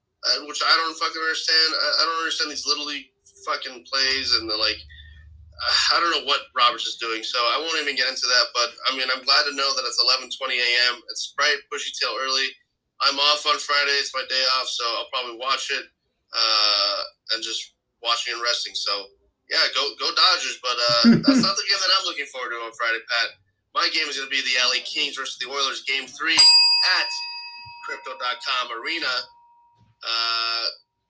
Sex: male